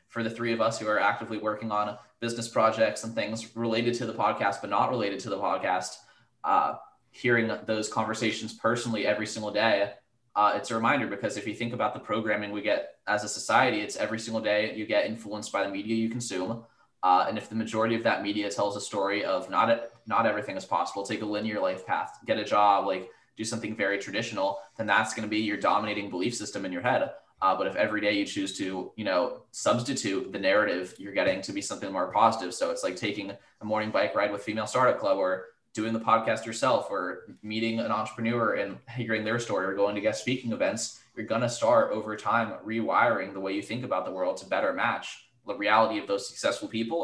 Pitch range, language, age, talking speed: 105-115 Hz, English, 20-39, 225 wpm